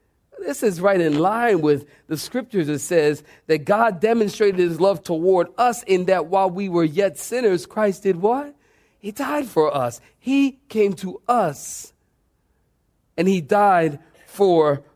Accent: American